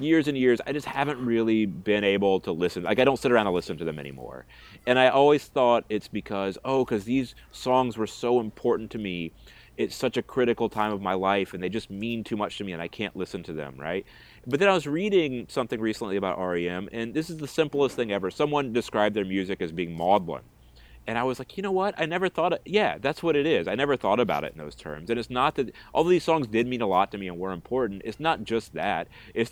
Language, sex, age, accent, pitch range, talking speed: English, male, 30-49, American, 95-125 Hz, 260 wpm